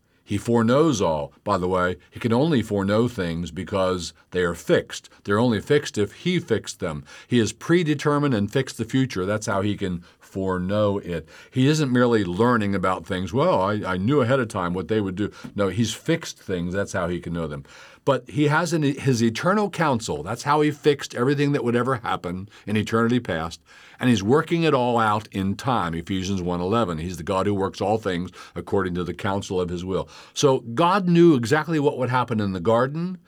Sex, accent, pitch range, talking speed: male, American, 95-130 Hz, 205 wpm